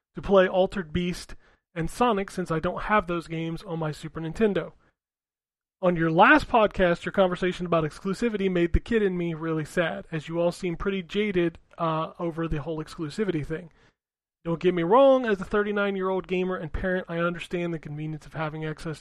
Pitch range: 160-190 Hz